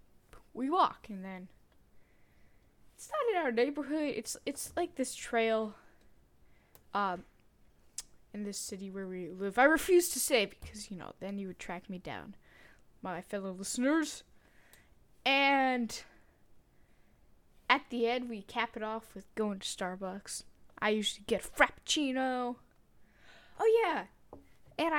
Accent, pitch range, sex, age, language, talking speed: American, 195-260 Hz, female, 10-29, English, 135 wpm